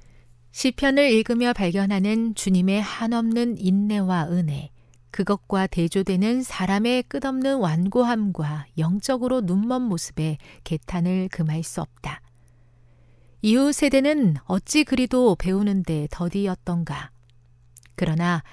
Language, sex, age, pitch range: Korean, female, 40-59, 160-235 Hz